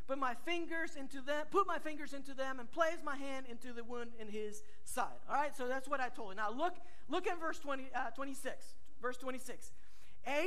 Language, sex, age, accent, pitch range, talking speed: English, male, 50-69, American, 265-355 Hz, 220 wpm